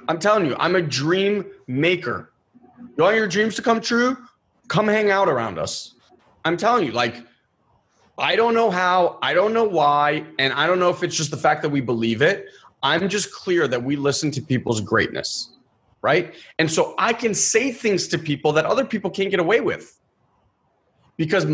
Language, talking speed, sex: English, 195 wpm, male